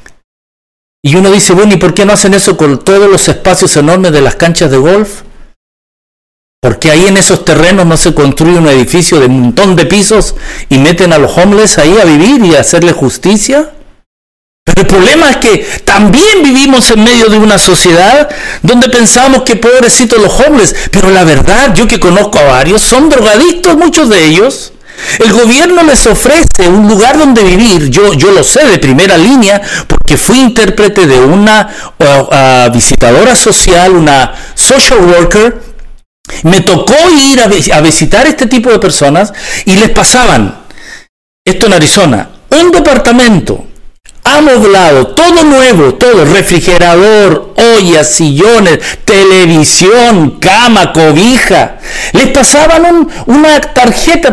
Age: 50-69